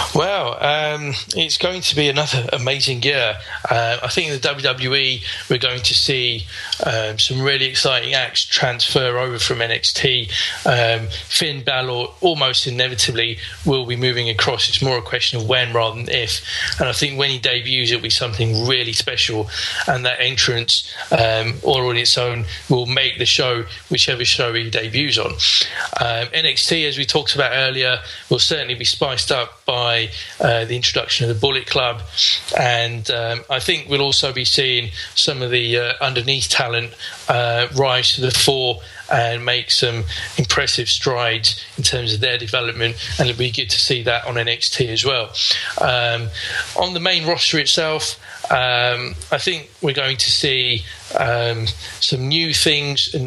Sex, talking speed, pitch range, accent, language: male, 170 wpm, 115-135 Hz, British, English